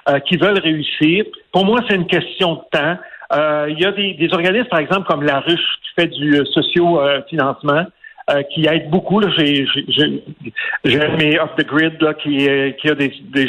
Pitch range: 145-185 Hz